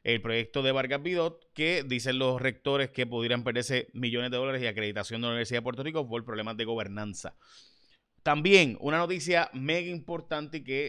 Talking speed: 180 wpm